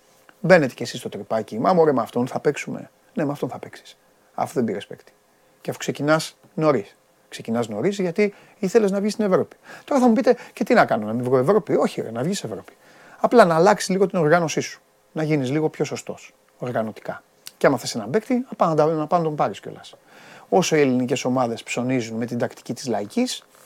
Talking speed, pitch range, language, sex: 215 wpm, 135-220 Hz, Greek, male